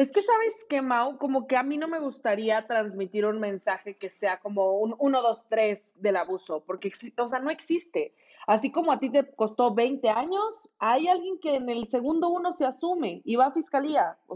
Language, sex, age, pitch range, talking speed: Spanish, female, 20-39, 200-270 Hz, 215 wpm